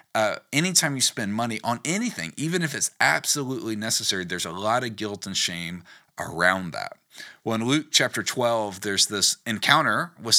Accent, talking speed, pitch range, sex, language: American, 175 wpm, 100-130 Hz, male, English